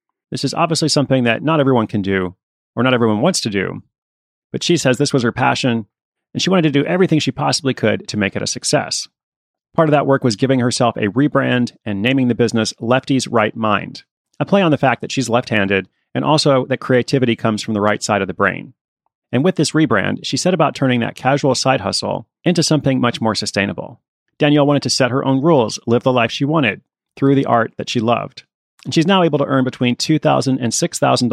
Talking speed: 220 wpm